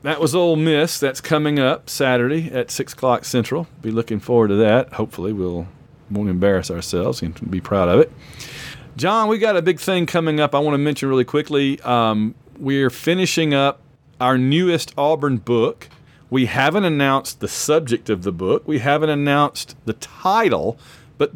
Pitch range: 120-150 Hz